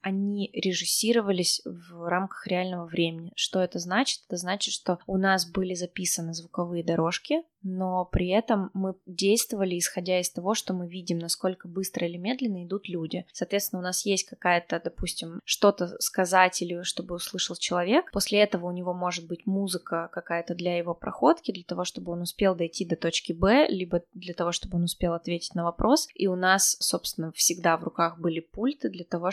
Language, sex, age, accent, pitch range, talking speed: Russian, female, 20-39, native, 175-200 Hz, 180 wpm